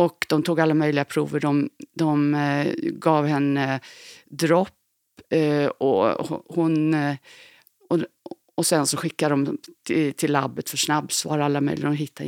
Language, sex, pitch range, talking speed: Swedish, female, 150-175 Hz, 160 wpm